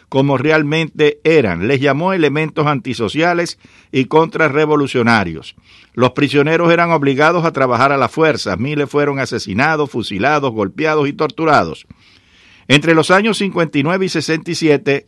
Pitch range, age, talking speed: 130-160 Hz, 60-79, 125 wpm